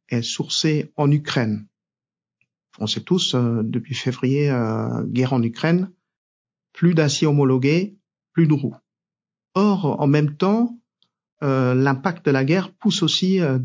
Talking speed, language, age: 140 wpm, French, 50-69